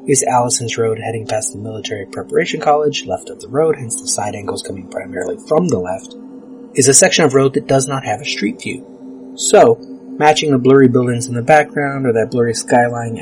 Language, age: English, 30-49